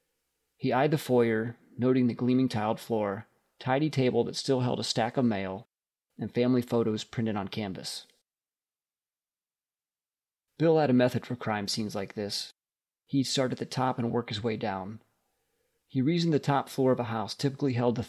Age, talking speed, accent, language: 40-59, 180 wpm, American, English